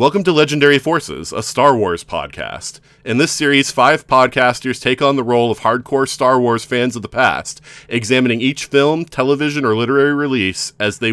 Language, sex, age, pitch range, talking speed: English, male, 30-49, 95-135 Hz, 185 wpm